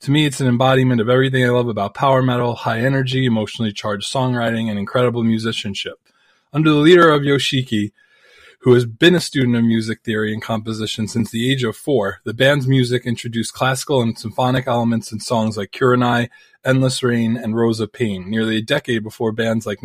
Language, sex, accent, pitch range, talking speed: English, male, American, 110-130 Hz, 195 wpm